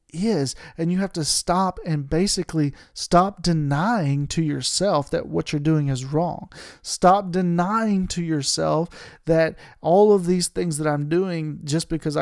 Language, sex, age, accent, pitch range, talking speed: English, male, 40-59, American, 145-180 Hz, 155 wpm